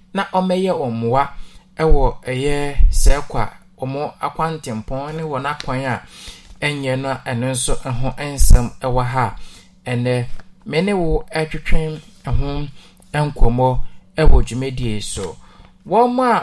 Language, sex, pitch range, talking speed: English, male, 130-175 Hz, 110 wpm